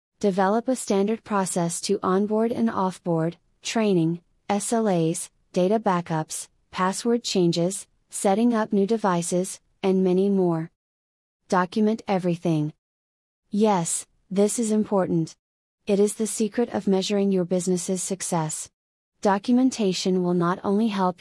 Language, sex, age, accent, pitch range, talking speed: English, female, 30-49, American, 170-200 Hz, 115 wpm